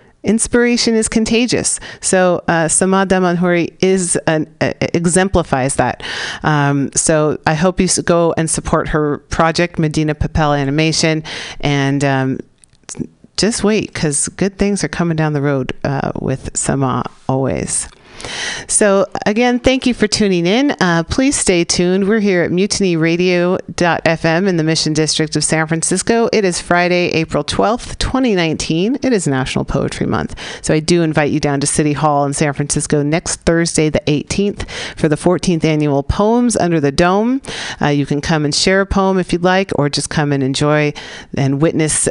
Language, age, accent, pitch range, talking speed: English, 40-59, American, 150-190 Hz, 165 wpm